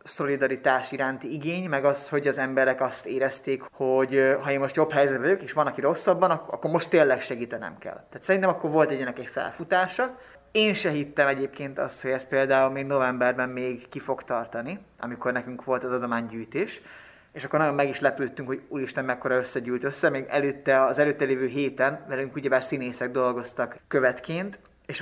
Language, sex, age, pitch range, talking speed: Hungarian, male, 20-39, 130-150 Hz, 180 wpm